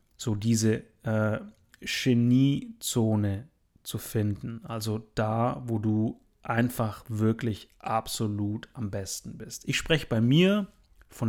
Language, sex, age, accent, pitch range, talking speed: German, male, 30-49, German, 110-140 Hz, 110 wpm